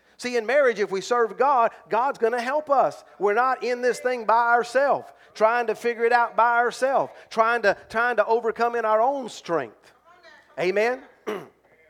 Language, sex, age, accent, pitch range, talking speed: English, male, 40-59, American, 200-250 Hz, 180 wpm